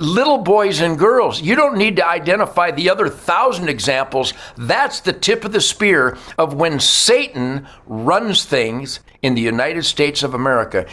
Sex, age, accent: male, 60-79, American